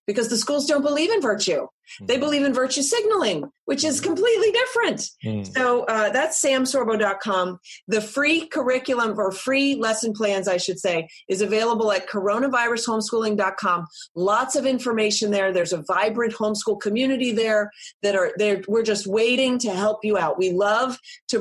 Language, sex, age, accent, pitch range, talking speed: English, female, 30-49, American, 205-275 Hz, 155 wpm